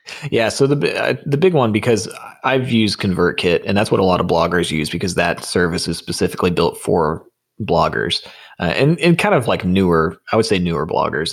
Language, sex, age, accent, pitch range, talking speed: English, male, 20-39, American, 85-105 Hz, 205 wpm